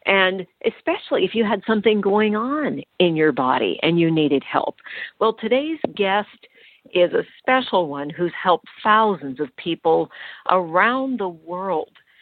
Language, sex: English, female